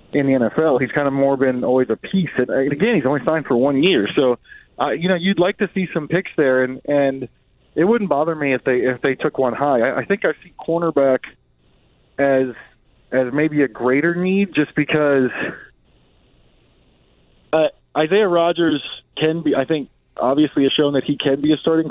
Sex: male